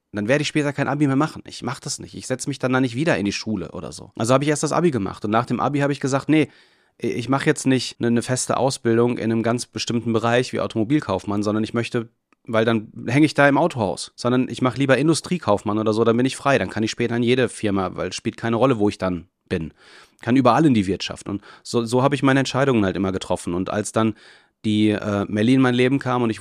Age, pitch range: 30-49, 110-140 Hz